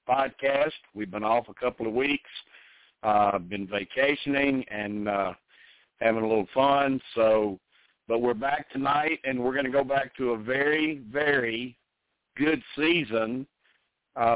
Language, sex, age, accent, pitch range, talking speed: English, male, 60-79, American, 110-135 Hz, 145 wpm